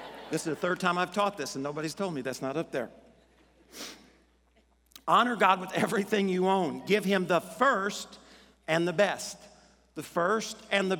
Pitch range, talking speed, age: 185-225 Hz, 180 wpm, 50-69